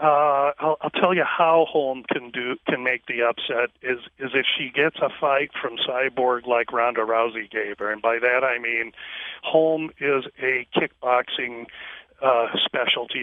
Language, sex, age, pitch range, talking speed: English, male, 40-59, 125-145 Hz, 170 wpm